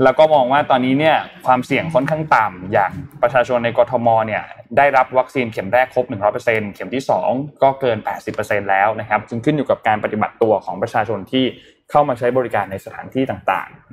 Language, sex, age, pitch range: Thai, male, 20-39, 110-140 Hz